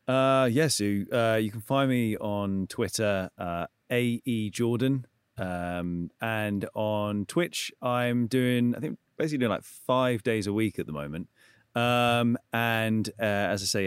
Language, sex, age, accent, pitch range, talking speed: English, male, 30-49, British, 90-120 Hz, 160 wpm